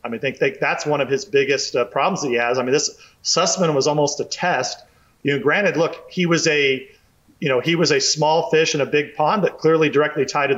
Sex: male